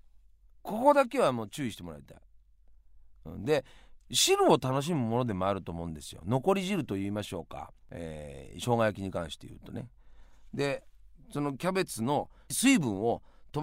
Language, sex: Japanese, male